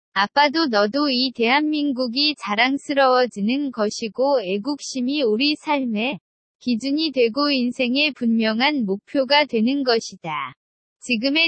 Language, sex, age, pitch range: Korean, female, 20-39, 225-295 Hz